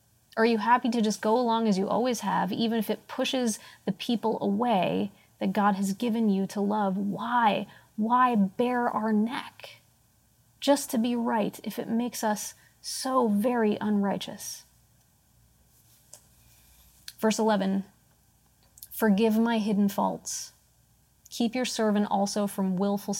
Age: 30-49